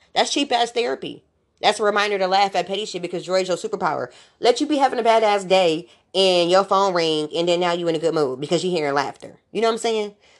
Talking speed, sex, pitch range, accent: 265 wpm, female, 165-215 Hz, American